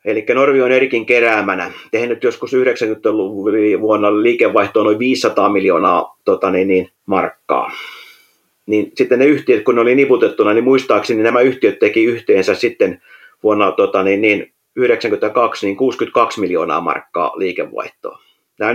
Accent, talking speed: native, 140 wpm